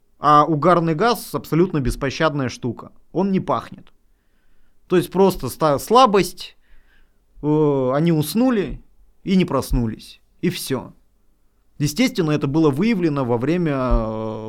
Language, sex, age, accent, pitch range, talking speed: Russian, male, 20-39, native, 130-180 Hz, 110 wpm